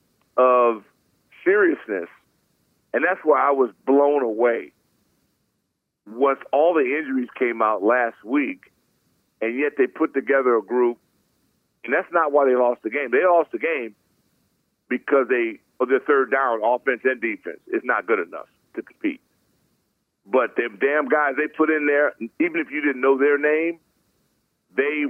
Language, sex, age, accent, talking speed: English, male, 50-69, American, 160 wpm